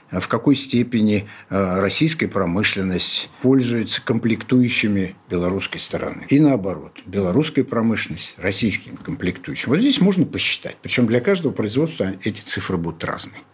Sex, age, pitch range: male, 60-79, 100-135 Hz